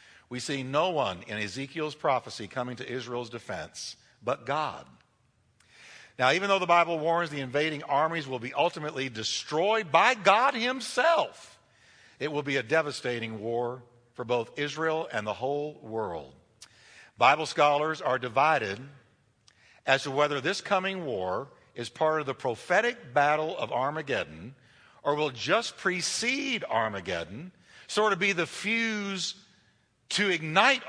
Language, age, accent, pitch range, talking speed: English, 60-79, American, 125-190 Hz, 140 wpm